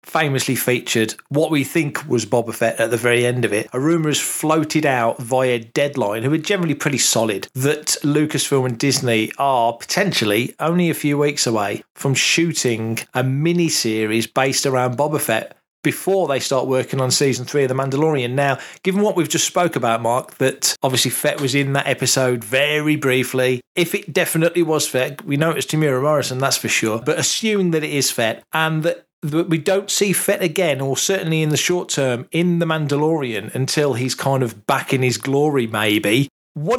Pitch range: 130-170 Hz